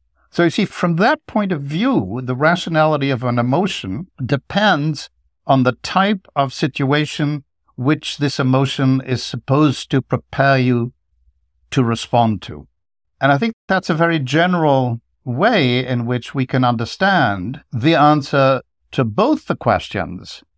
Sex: male